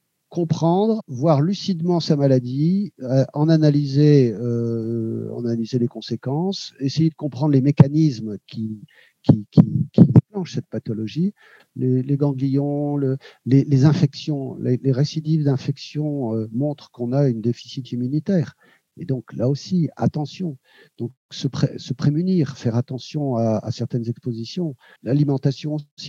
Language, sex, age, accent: French, male, 50-69, French